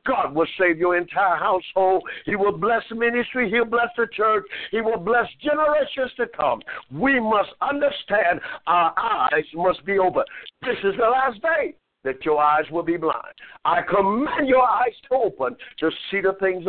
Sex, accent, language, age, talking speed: male, American, English, 60-79, 175 wpm